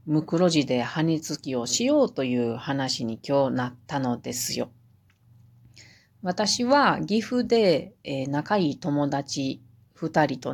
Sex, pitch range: female, 120-180 Hz